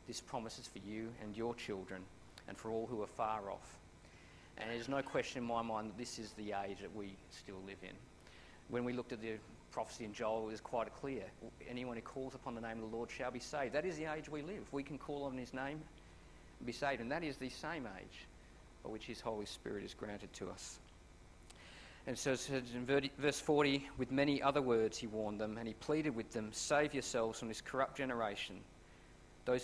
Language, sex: English, male